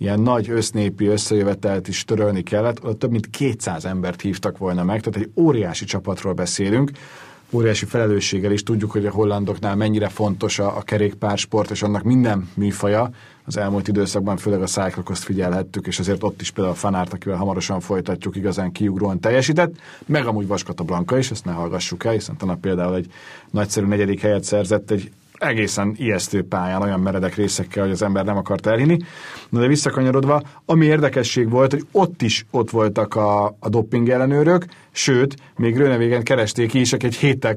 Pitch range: 100-125 Hz